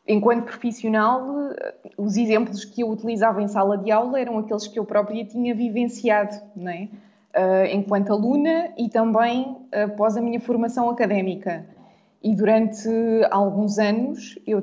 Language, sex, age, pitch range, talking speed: Portuguese, female, 20-39, 205-240 Hz, 135 wpm